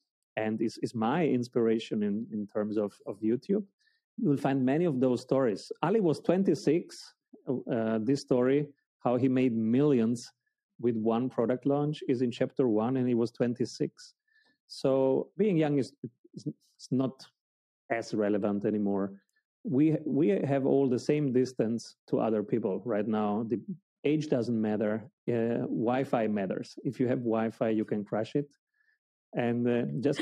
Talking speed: 155 wpm